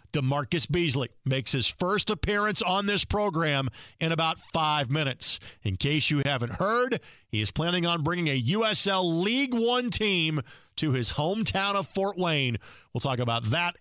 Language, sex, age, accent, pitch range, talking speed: English, male, 50-69, American, 130-185 Hz, 165 wpm